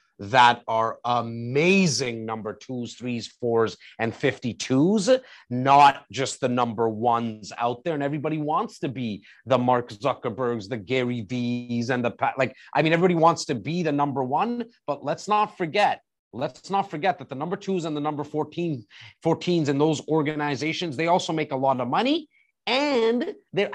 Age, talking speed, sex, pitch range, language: 30-49, 170 wpm, male, 130-190 Hz, English